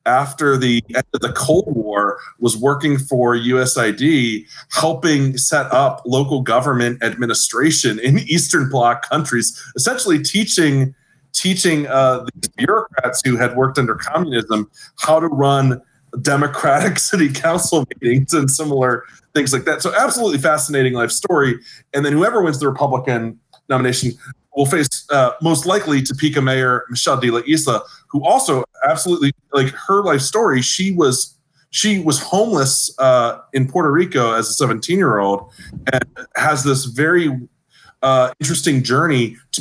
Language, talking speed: English, 145 wpm